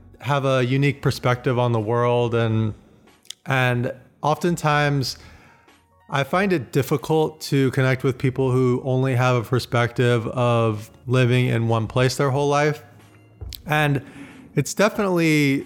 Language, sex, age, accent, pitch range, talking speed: English, male, 30-49, American, 120-140 Hz, 130 wpm